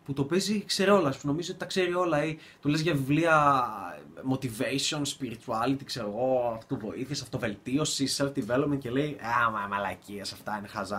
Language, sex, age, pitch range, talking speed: Greek, male, 20-39, 125-165 Hz, 155 wpm